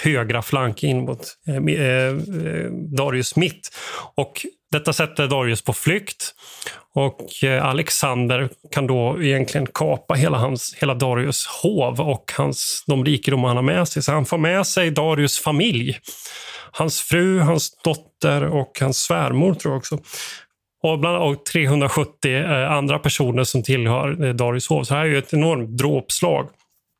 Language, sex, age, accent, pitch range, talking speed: Swedish, male, 30-49, native, 130-155 Hz, 155 wpm